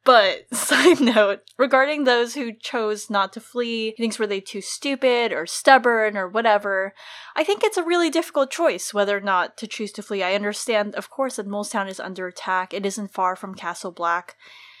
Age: 10-29